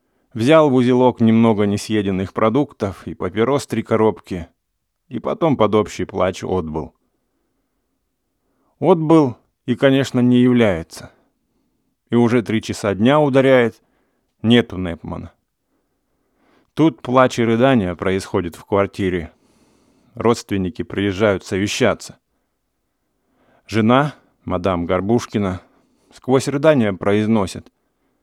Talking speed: 95 wpm